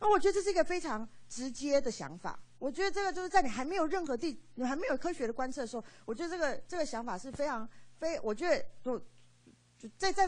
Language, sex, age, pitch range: Chinese, female, 40-59, 195-325 Hz